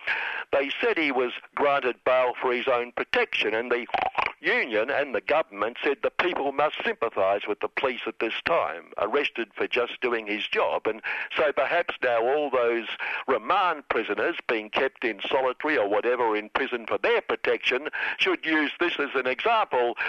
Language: English